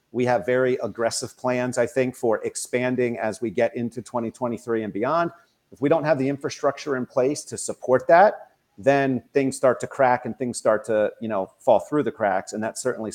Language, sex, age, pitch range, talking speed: English, male, 40-59, 110-135 Hz, 205 wpm